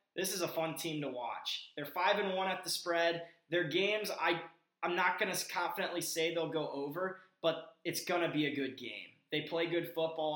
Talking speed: 215 wpm